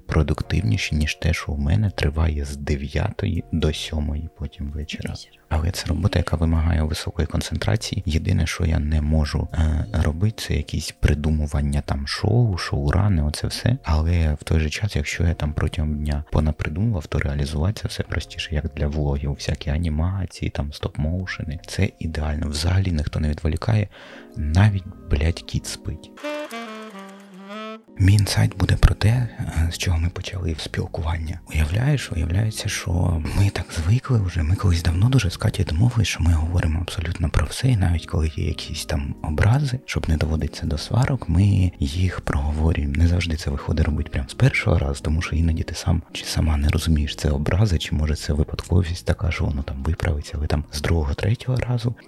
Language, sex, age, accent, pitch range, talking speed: Ukrainian, male, 30-49, native, 75-100 Hz, 170 wpm